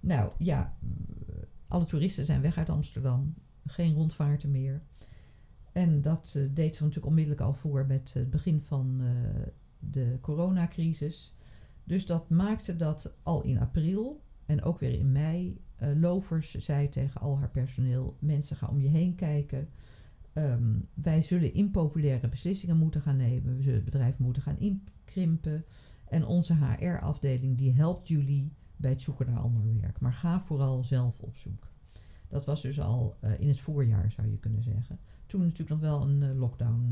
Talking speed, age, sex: 165 wpm, 50-69, female